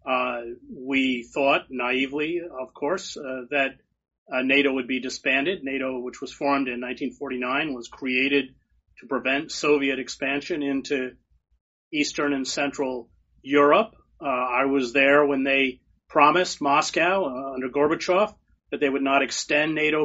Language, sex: English, male